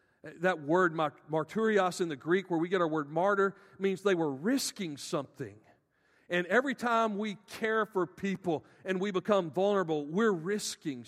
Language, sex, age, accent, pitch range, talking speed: English, male, 50-69, American, 135-175 Hz, 160 wpm